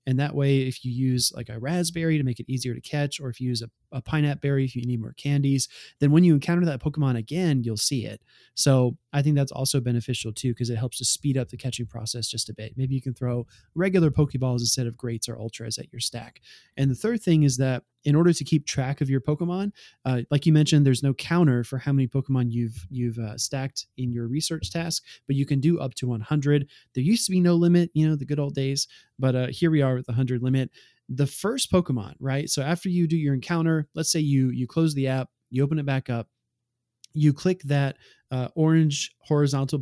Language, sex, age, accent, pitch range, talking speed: English, male, 20-39, American, 125-150 Hz, 240 wpm